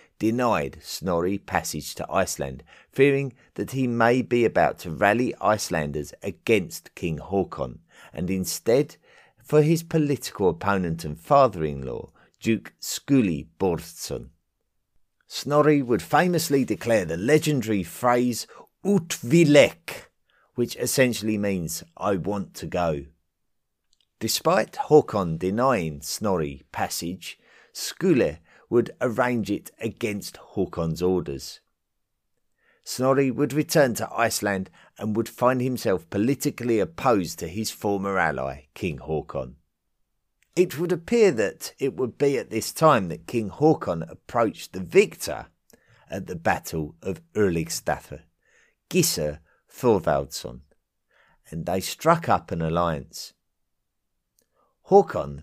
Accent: British